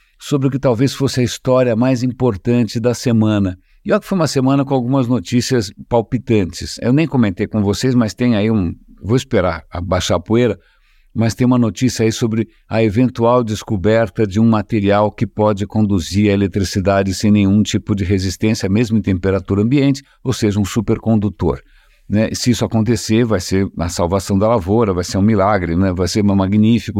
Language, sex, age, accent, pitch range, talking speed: English, male, 50-69, Brazilian, 100-120 Hz, 190 wpm